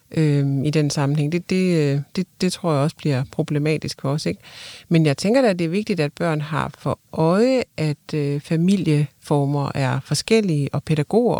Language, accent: Danish, native